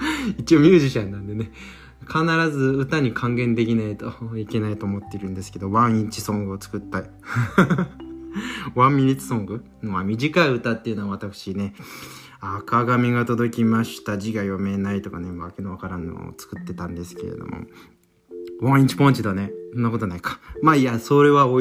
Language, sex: Japanese, male